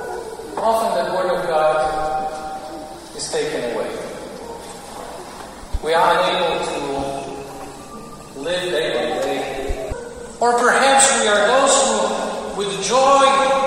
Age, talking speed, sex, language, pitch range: 50-69, 105 wpm, male, Ukrainian, 190-280 Hz